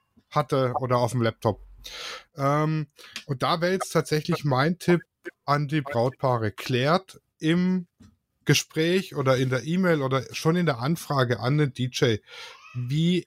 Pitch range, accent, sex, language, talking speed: 125-165 Hz, German, male, German, 145 wpm